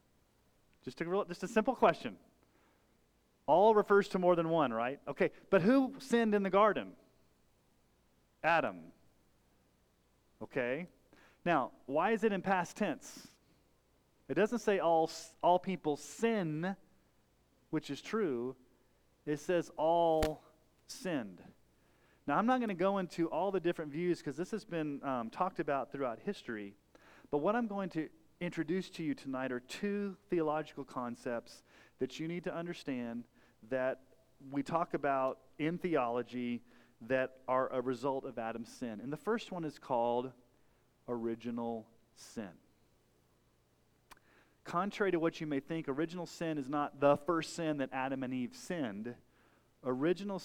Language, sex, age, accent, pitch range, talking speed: English, male, 30-49, American, 125-175 Hz, 145 wpm